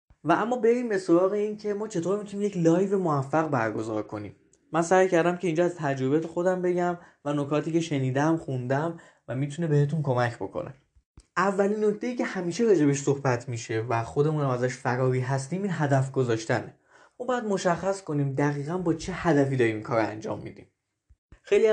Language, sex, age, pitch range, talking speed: Persian, male, 20-39, 140-185 Hz, 170 wpm